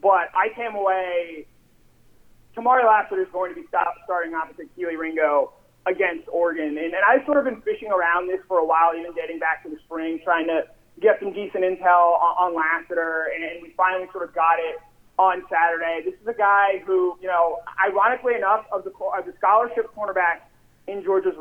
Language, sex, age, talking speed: English, male, 30-49, 205 wpm